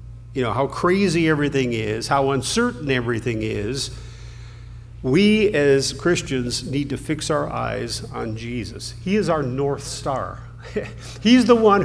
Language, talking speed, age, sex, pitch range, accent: English, 140 wpm, 50-69, male, 115-145 Hz, American